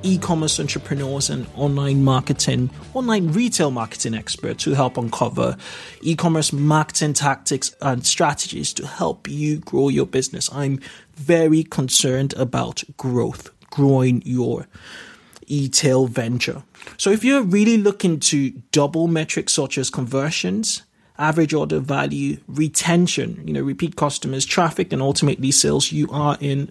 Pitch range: 135-170 Hz